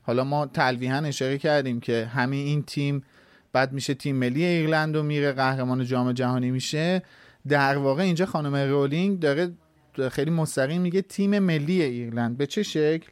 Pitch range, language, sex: 130-165 Hz, Persian, male